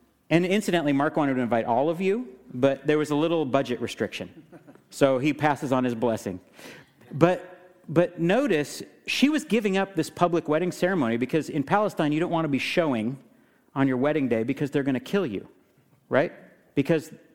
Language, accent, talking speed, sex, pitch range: English, American, 185 wpm, male, 135-180 Hz